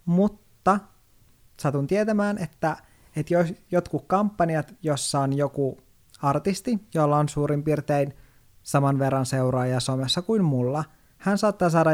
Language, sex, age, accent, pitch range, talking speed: Finnish, male, 20-39, native, 135-160 Hz, 120 wpm